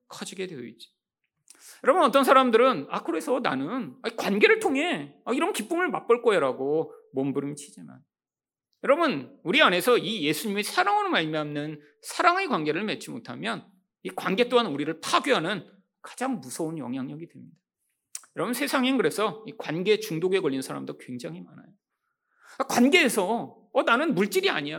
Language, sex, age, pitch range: Korean, male, 40-59, 185-285 Hz